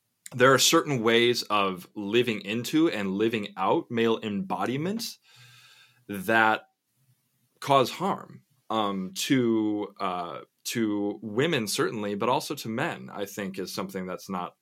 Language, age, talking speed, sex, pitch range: English, 20-39, 125 wpm, male, 100-120 Hz